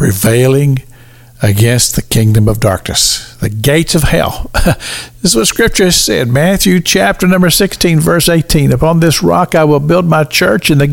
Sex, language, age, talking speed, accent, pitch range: male, English, 60-79, 175 wpm, American, 120-185 Hz